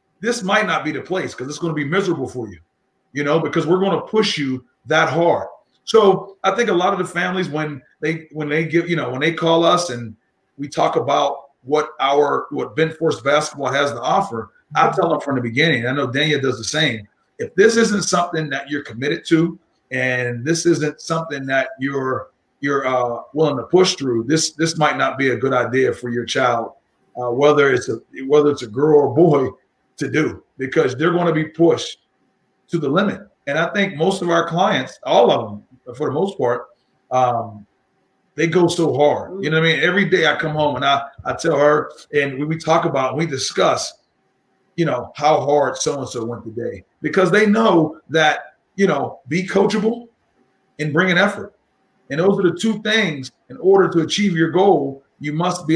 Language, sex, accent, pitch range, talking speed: English, male, American, 140-175 Hz, 210 wpm